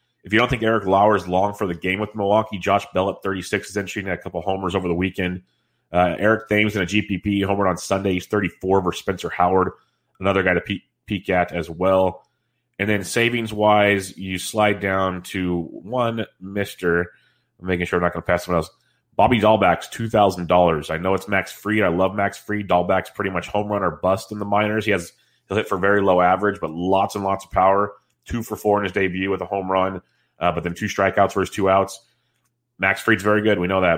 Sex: male